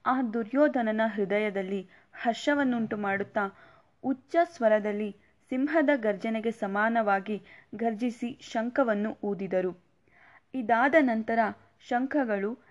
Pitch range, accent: 205-255 Hz, native